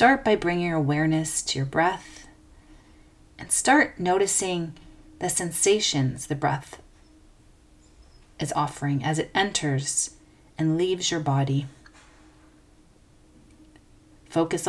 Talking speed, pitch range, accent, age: 100 wpm, 145-190 Hz, American, 40-59